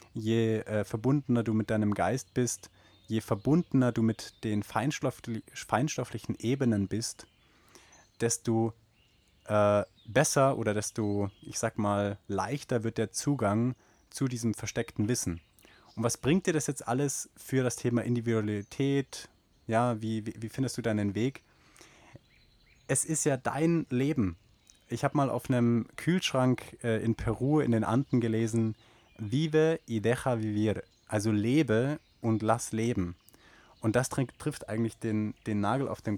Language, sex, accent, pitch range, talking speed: German, male, German, 110-135 Hz, 145 wpm